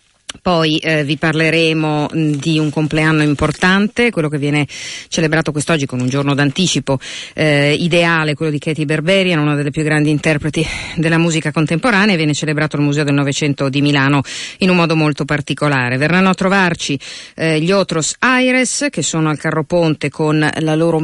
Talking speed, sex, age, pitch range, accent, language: 170 wpm, female, 40-59, 145-175 Hz, native, Italian